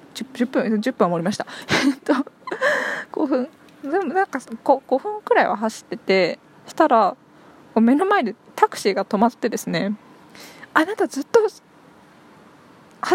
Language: Japanese